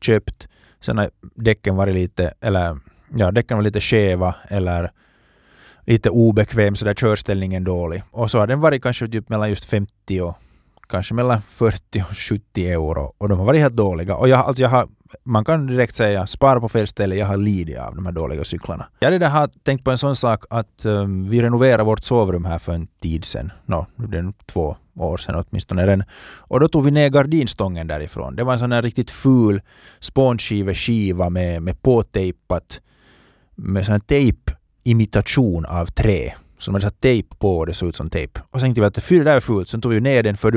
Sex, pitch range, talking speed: male, 90-120 Hz, 200 wpm